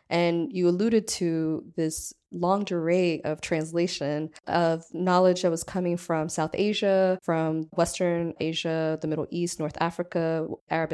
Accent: American